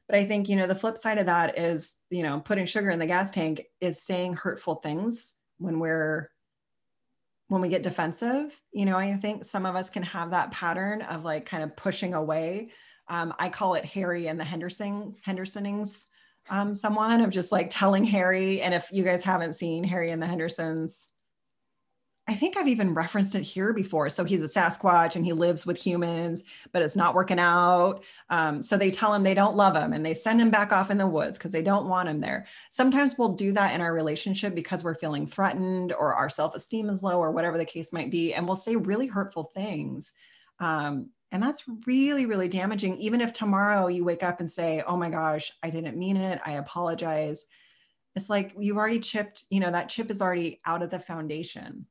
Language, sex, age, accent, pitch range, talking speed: English, female, 30-49, American, 170-205 Hz, 215 wpm